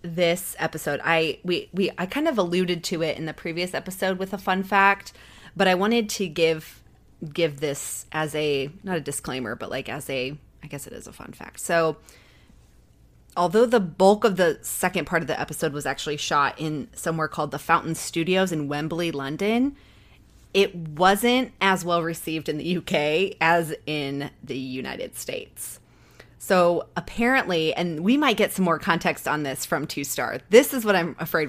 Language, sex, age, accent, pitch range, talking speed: English, female, 30-49, American, 155-200 Hz, 185 wpm